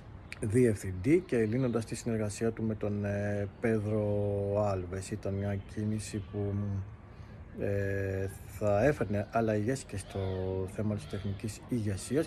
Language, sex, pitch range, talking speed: Greek, male, 100-115 Hz, 115 wpm